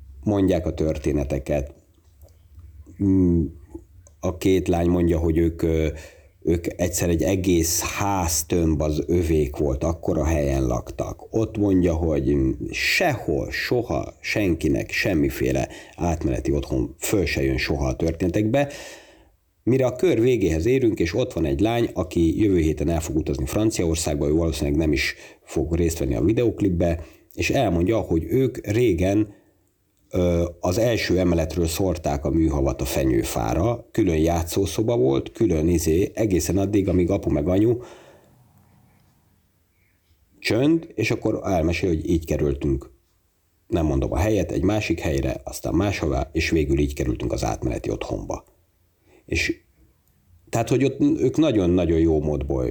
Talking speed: 130 wpm